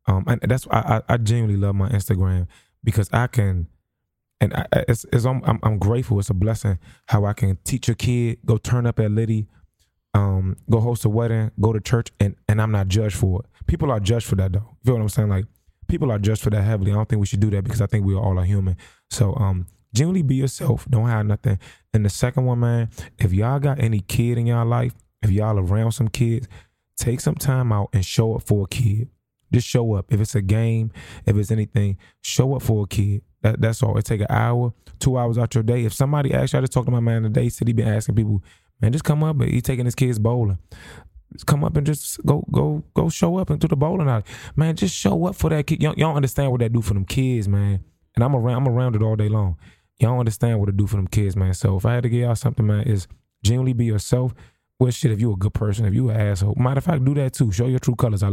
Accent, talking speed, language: American, 260 wpm, English